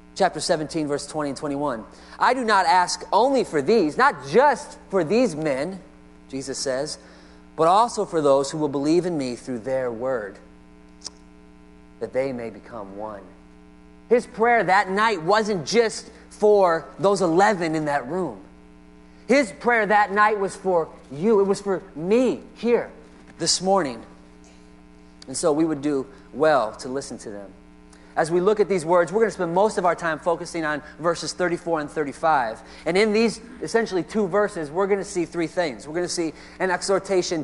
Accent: American